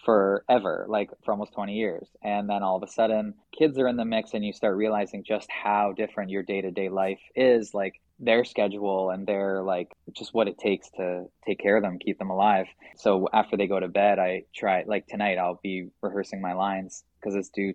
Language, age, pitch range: English, 20-39, 95-110 Hz